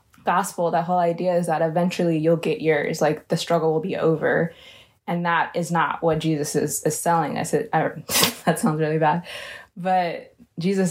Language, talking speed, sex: English, 185 wpm, female